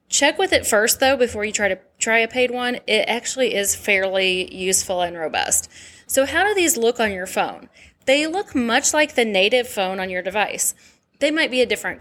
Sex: female